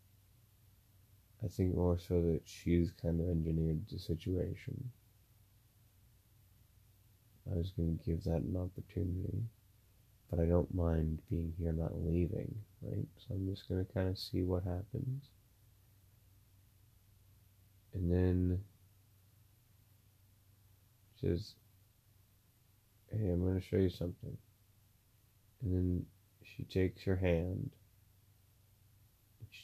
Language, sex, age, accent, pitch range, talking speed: English, male, 30-49, American, 90-105 Hz, 115 wpm